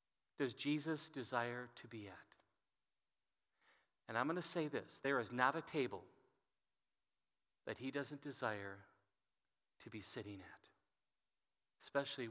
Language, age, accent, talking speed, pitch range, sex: English, 40-59, American, 125 wpm, 130-205 Hz, male